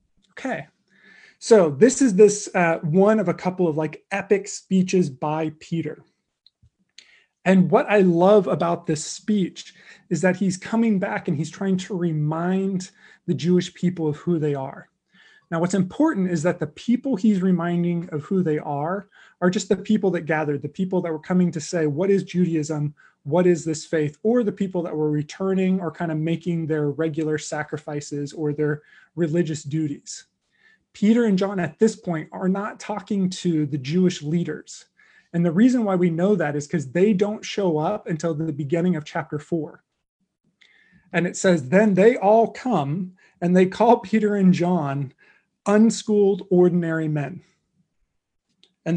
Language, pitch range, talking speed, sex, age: English, 160-200 Hz, 170 wpm, male, 20-39